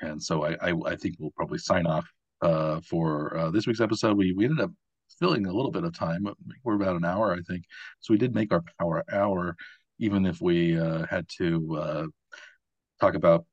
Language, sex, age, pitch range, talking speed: English, male, 40-59, 85-125 Hz, 215 wpm